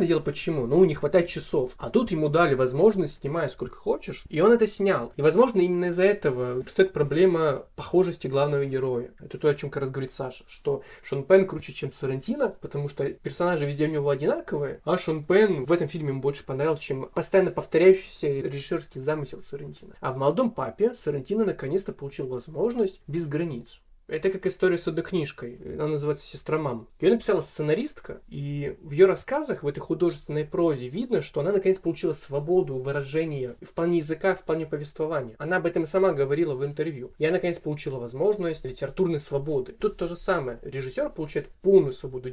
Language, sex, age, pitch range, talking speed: Russian, male, 20-39, 140-185 Hz, 185 wpm